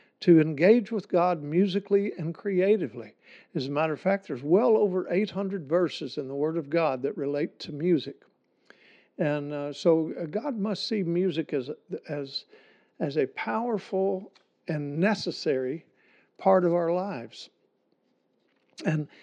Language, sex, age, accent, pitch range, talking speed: English, male, 60-79, American, 155-200 Hz, 135 wpm